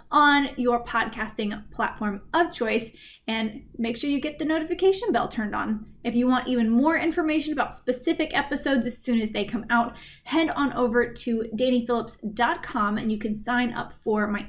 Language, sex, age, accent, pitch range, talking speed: English, female, 20-39, American, 220-275 Hz, 180 wpm